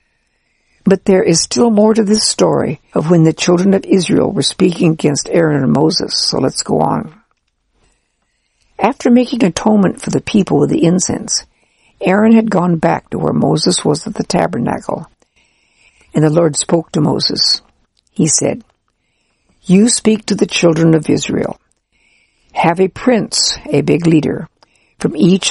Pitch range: 165-210 Hz